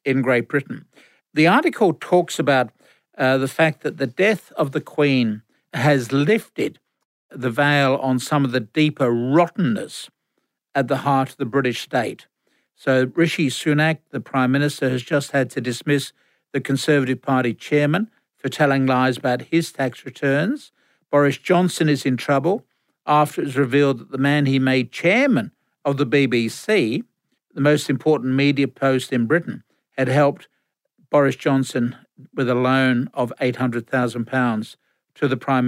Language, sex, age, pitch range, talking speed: English, male, 60-79, 130-150 Hz, 160 wpm